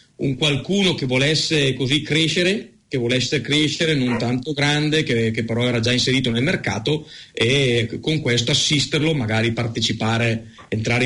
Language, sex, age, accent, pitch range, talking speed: Italian, male, 30-49, native, 115-145 Hz, 145 wpm